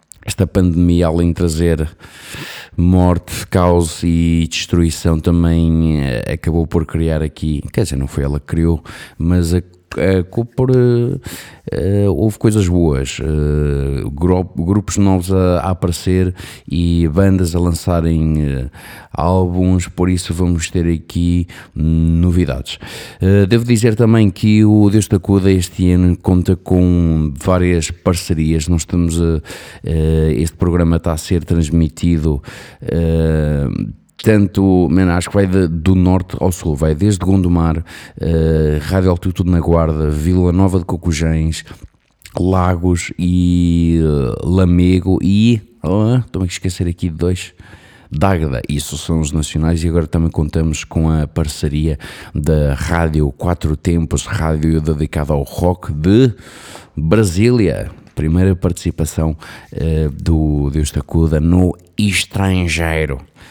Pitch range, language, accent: 80-95 Hz, Portuguese, Portuguese